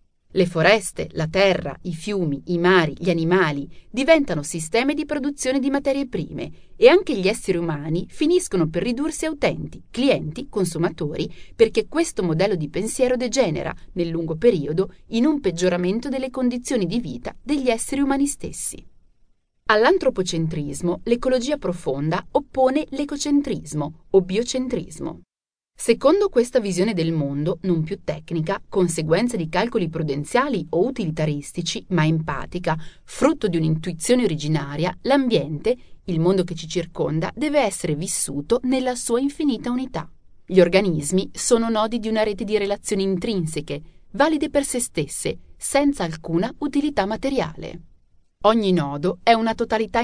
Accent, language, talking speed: native, Italian, 135 wpm